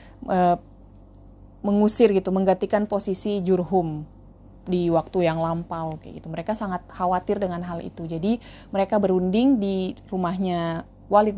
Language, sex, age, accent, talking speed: Indonesian, female, 20-39, native, 120 wpm